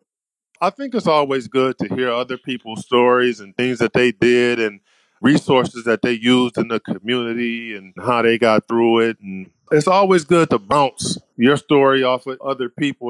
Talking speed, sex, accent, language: 190 wpm, male, American, English